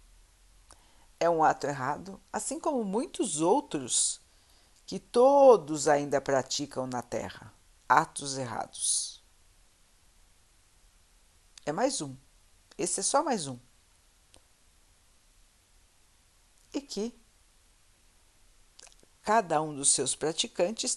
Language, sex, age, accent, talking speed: Portuguese, female, 60-79, Brazilian, 90 wpm